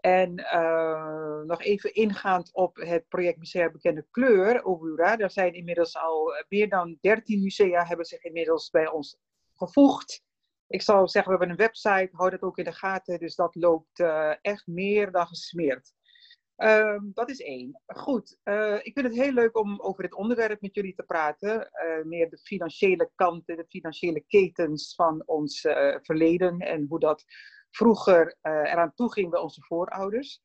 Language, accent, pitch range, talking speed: Dutch, Dutch, 165-205 Hz, 175 wpm